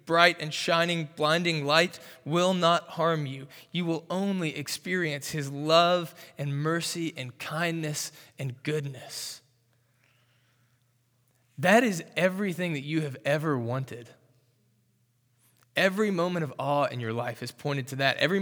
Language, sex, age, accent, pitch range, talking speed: English, male, 20-39, American, 135-170 Hz, 135 wpm